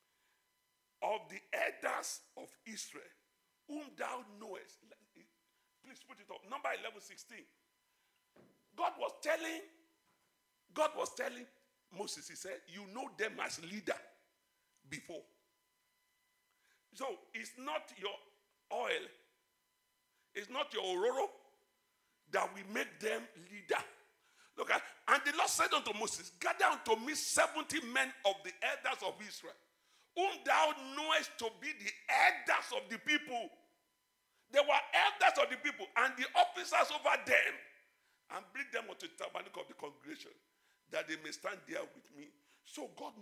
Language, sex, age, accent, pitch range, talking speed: English, male, 50-69, Nigerian, 225-335 Hz, 140 wpm